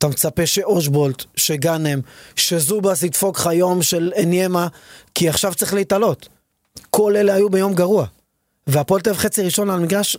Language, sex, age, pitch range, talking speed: Hebrew, male, 30-49, 155-195 Hz, 135 wpm